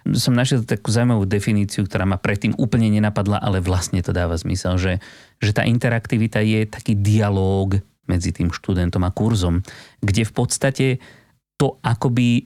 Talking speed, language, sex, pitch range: 155 wpm, Slovak, male, 95-125 Hz